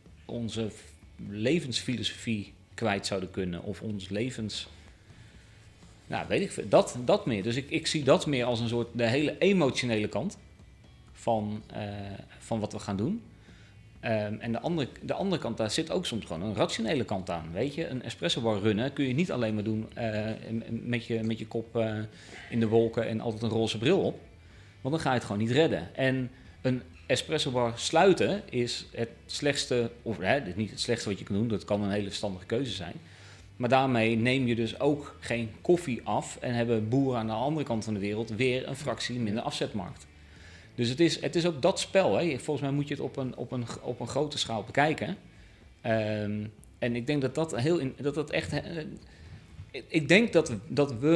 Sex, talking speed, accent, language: male, 200 wpm, Dutch, Dutch